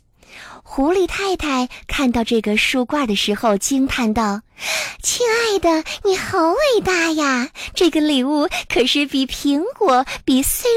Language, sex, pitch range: Chinese, male, 210-330 Hz